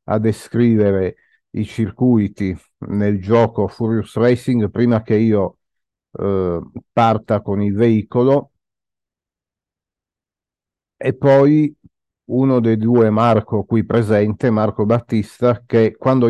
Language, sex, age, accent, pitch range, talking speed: Italian, male, 50-69, native, 105-125 Hz, 105 wpm